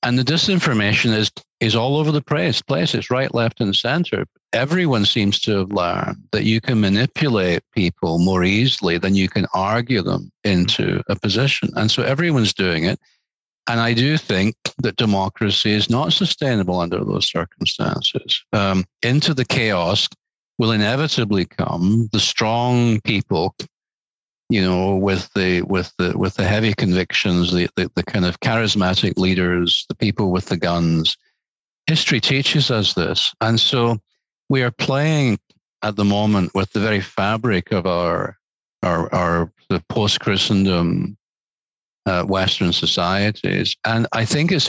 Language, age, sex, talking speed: English, 50-69, male, 150 wpm